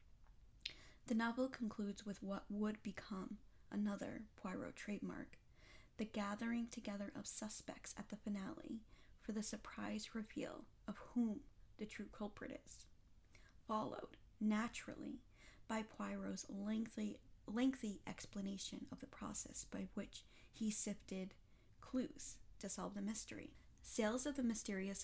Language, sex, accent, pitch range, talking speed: English, female, American, 190-220 Hz, 120 wpm